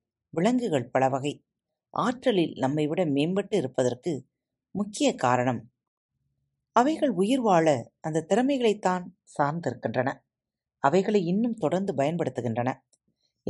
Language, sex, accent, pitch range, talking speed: Tamil, female, native, 130-205 Hz, 85 wpm